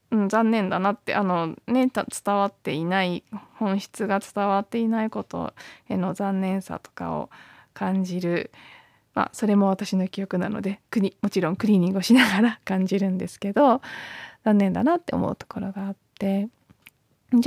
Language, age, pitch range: Japanese, 20-39, 195-265 Hz